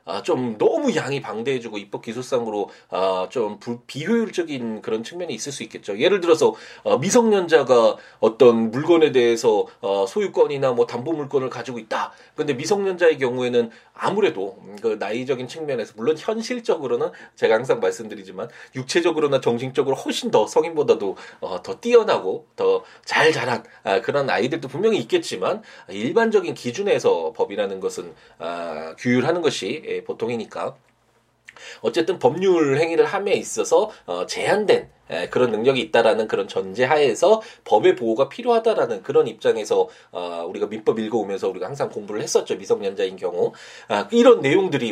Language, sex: Korean, male